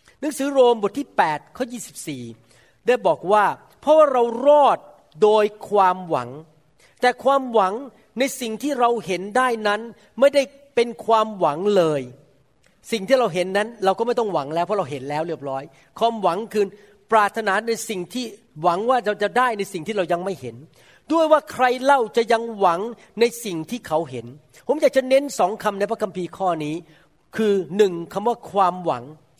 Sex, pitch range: male, 175-245 Hz